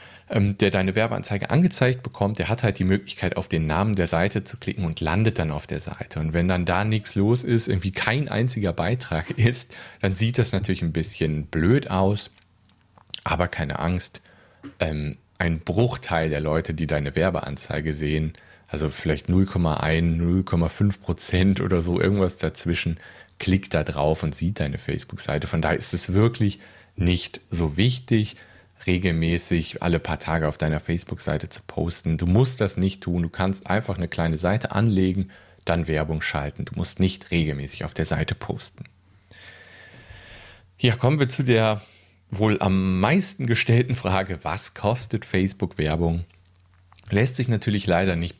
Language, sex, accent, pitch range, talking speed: German, male, German, 85-105 Hz, 160 wpm